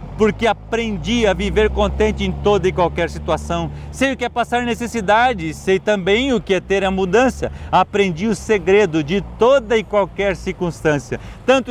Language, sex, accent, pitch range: Portuguese, male, Brazilian, 150-205 Hz